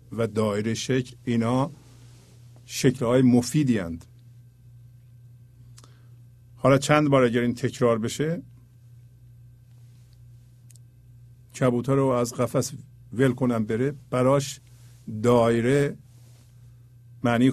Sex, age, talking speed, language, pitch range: male, 50-69, 80 wpm, Persian, 120-130 Hz